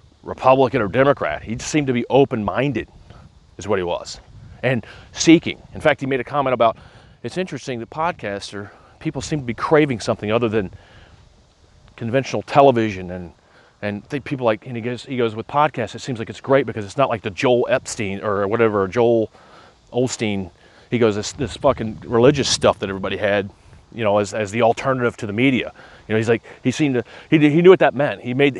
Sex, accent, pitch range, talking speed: male, American, 115-170 Hz, 205 wpm